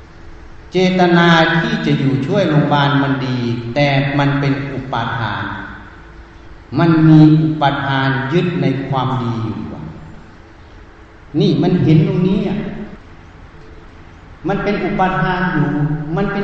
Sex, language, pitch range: male, Thai, 115-160 Hz